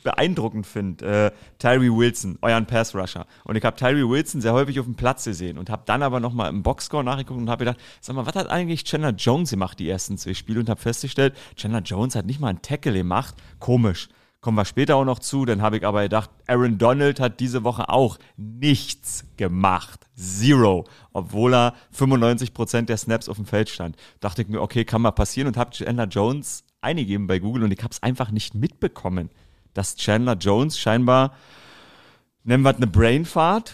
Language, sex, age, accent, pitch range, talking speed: German, male, 30-49, German, 105-130 Hz, 200 wpm